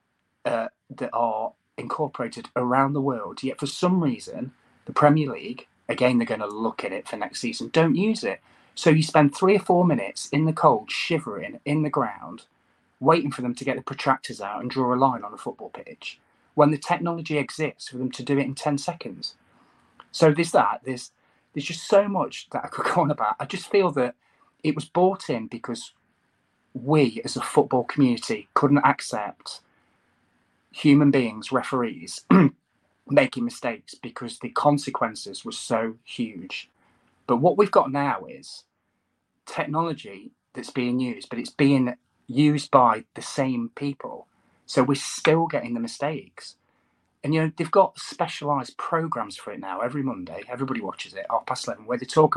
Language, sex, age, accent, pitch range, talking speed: English, male, 30-49, British, 130-170 Hz, 175 wpm